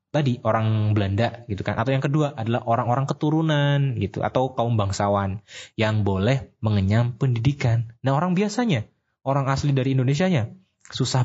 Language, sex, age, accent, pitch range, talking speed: Indonesian, male, 20-39, native, 105-130 Hz, 145 wpm